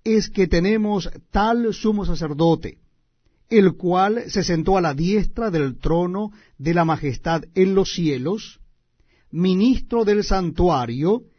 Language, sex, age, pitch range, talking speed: Spanish, male, 50-69, 165-220 Hz, 125 wpm